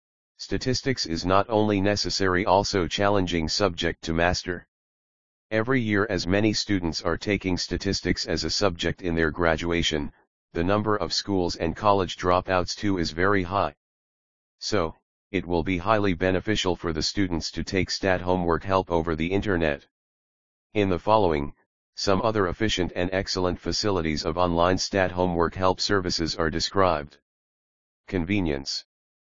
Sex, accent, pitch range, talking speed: male, American, 85-100 Hz, 145 wpm